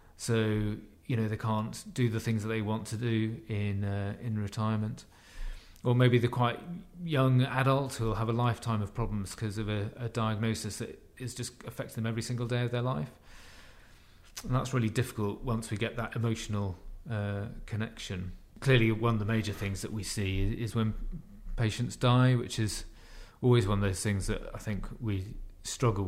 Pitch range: 95-115 Hz